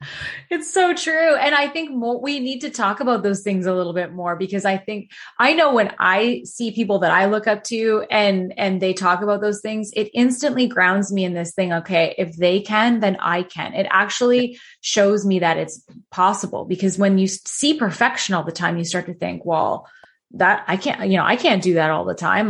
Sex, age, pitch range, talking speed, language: female, 20-39, 180-230 Hz, 225 wpm, English